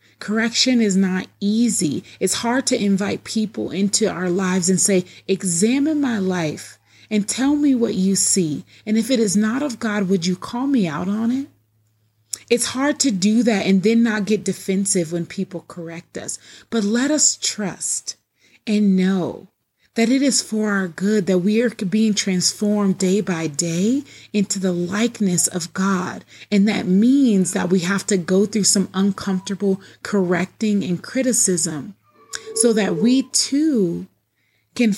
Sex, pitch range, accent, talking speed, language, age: female, 185-225 Hz, American, 165 wpm, English, 30-49